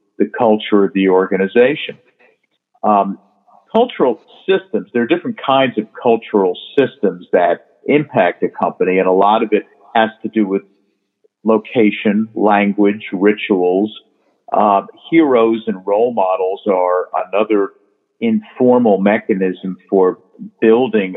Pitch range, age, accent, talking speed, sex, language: 100-145 Hz, 50-69, American, 120 wpm, male, English